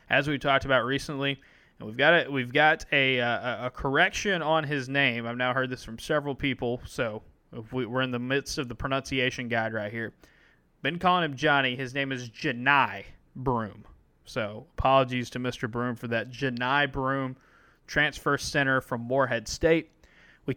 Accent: American